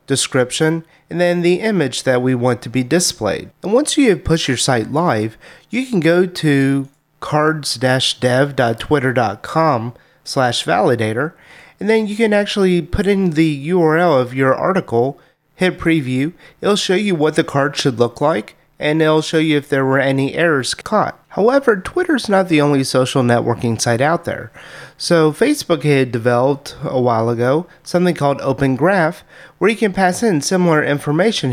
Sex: male